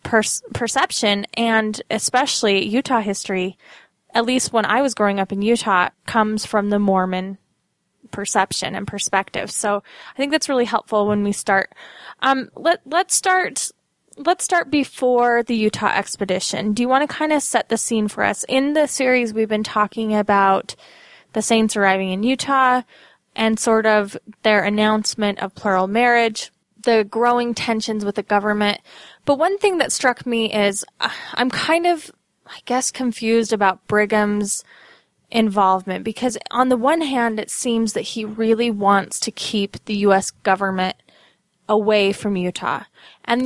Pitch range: 200-240 Hz